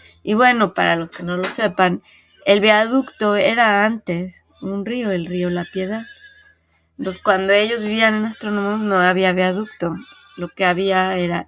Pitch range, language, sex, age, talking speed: 175-210 Hz, Spanish, female, 20-39, 160 wpm